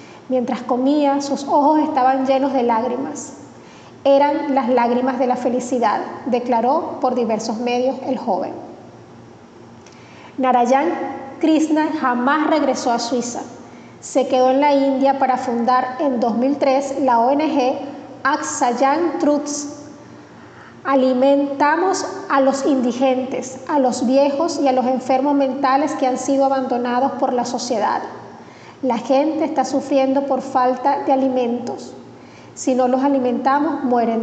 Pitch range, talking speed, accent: 255-285 Hz, 125 wpm, American